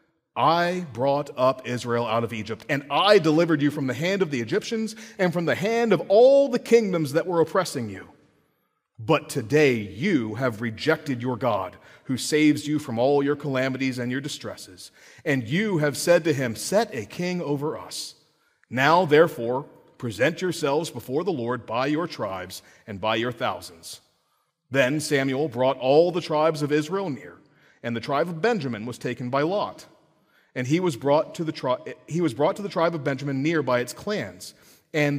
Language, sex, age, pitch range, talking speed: English, male, 40-59, 130-165 Hz, 185 wpm